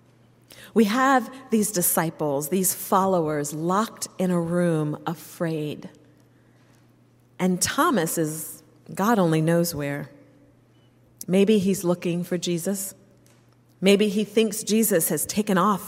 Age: 40-59